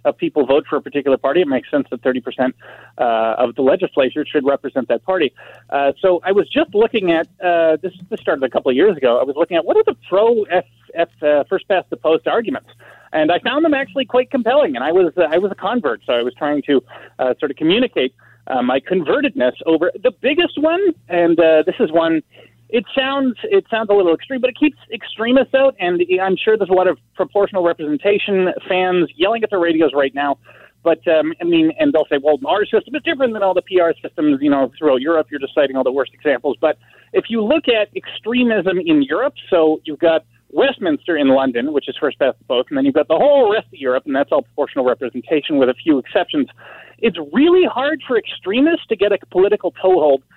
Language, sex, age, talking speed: English, male, 30-49, 225 wpm